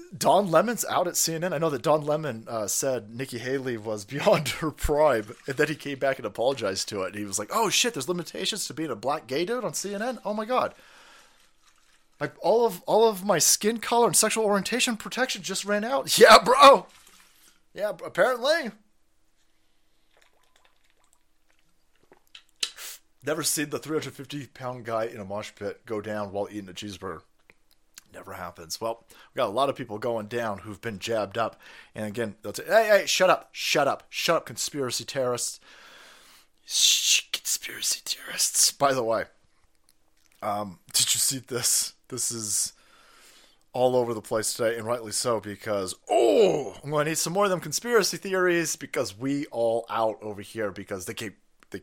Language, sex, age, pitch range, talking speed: English, male, 30-49, 105-175 Hz, 170 wpm